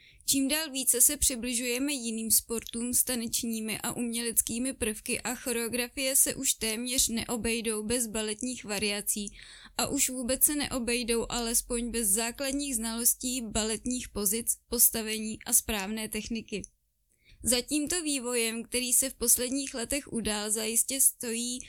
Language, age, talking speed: Czech, 20-39, 125 wpm